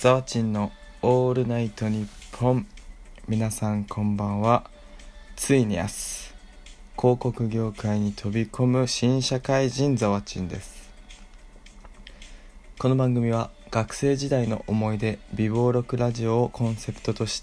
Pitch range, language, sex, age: 105-125 Hz, Japanese, male, 20-39